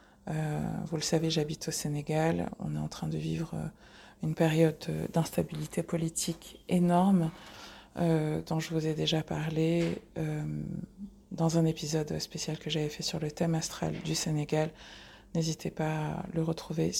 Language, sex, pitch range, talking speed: English, female, 165-185 Hz, 160 wpm